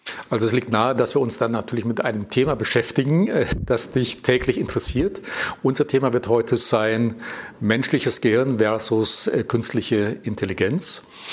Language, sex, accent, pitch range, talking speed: German, male, German, 115-145 Hz, 145 wpm